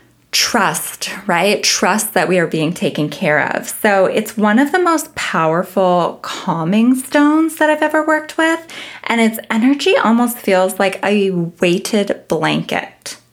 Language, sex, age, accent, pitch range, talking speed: English, female, 20-39, American, 180-240 Hz, 150 wpm